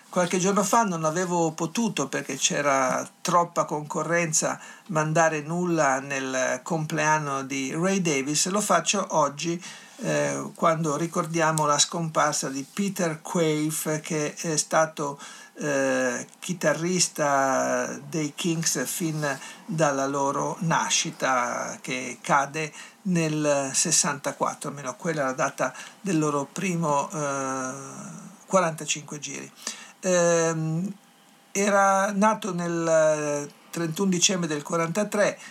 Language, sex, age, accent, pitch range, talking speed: Italian, male, 50-69, native, 145-180 Hz, 105 wpm